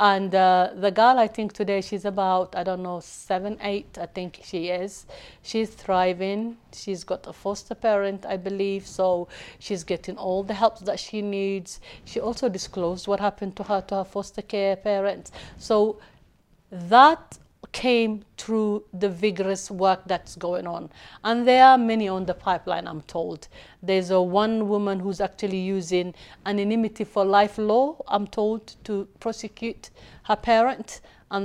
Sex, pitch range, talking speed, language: female, 185-215 Hz, 160 wpm, English